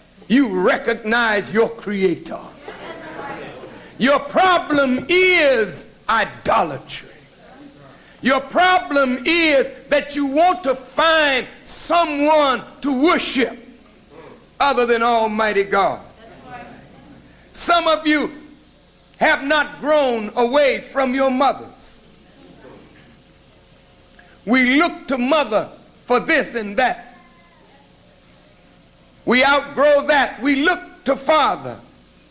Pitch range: 235-300 Hz